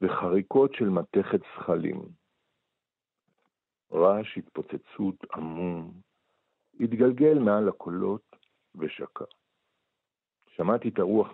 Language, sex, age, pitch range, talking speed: Hebrew, male, 50-69, 85-110 Hz, 75 wpm